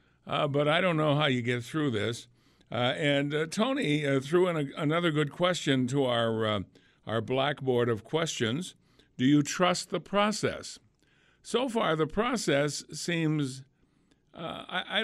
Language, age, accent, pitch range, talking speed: English, 50-69, American, 130-170 Hz, 165 wpm